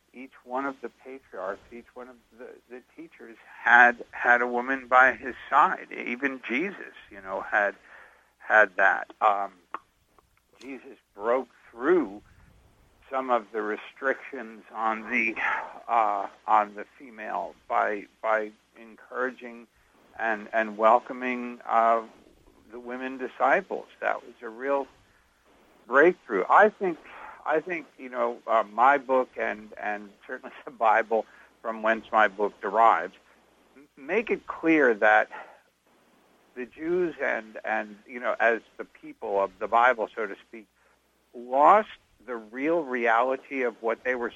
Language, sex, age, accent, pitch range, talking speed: English, male, 60-79, American, 110-130 Hz, 135 wpm